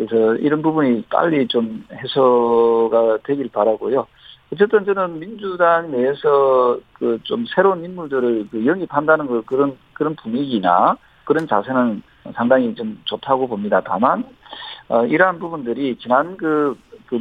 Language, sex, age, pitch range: Korean, male, 50-69, 120-165 Hz